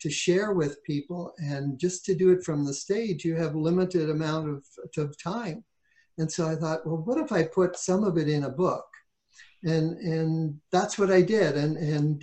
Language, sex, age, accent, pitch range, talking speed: English, male, 60-79, American, 150-185 Hz, 205 wpm